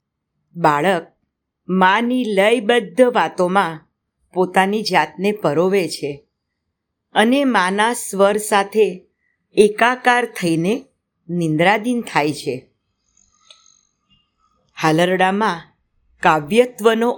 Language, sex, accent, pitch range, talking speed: Gujarati, female, native, 160-220 Hz, 65 wpm